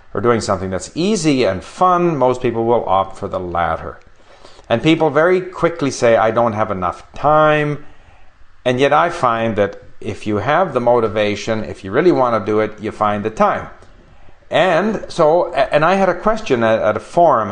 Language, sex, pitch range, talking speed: English, male, 100-140 Hz, 190 wpm